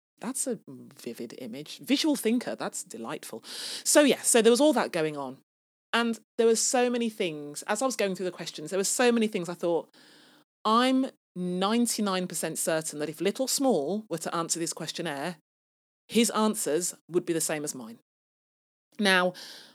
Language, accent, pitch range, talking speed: English, British, 180-255 Hz, 175 wpm